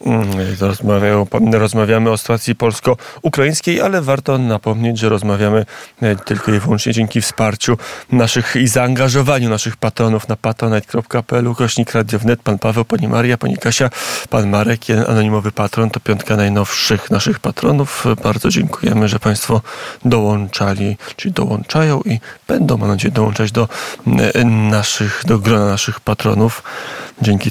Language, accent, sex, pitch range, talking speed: Polish, native, male, 110-125 Hz, 125 wpm